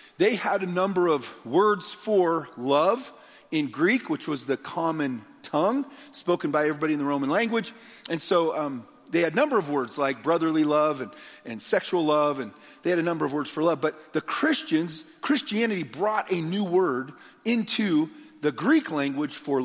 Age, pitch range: 40-59, 140-200 Hz